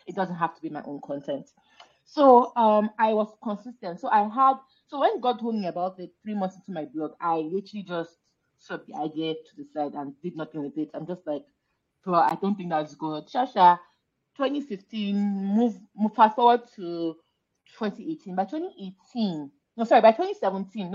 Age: 30-49